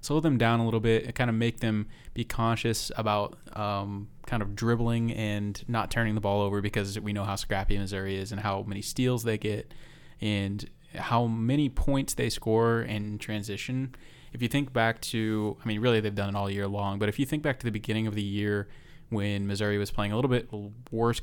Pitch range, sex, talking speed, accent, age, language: 105-125 Hz, male, 220 wpm, American, 20-39, English